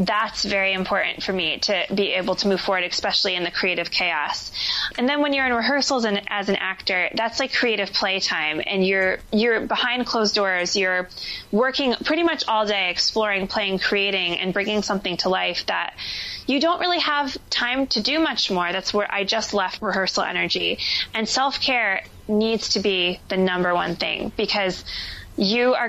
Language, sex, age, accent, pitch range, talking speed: English, female, 20-39, American, 195-250 Hz, 185 wpm